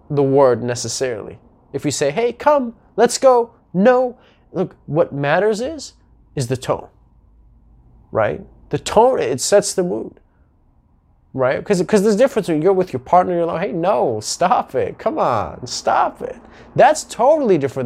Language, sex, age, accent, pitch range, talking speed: English, male, 20-39, American, 135-195 Hz, 160 wpm